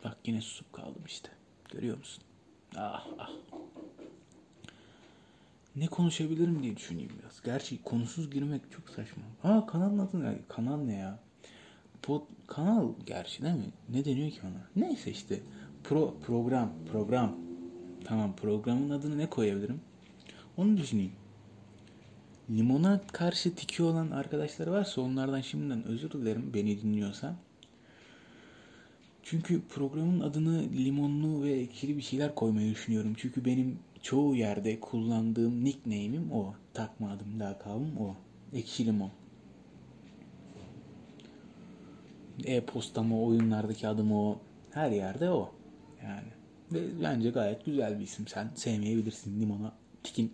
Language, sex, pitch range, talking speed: Turkish, male, 105-145 Hz, 120 wpm